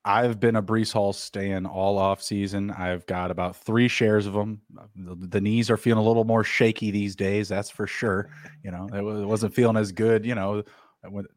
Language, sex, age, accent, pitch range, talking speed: English, male, 30-49, American, 100-120 Hz, 210 wpm